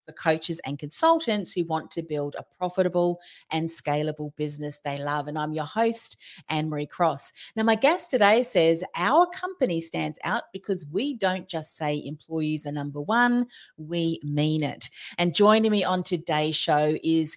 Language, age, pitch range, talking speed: English, 40-59, 155-215 Hz, 170 wpm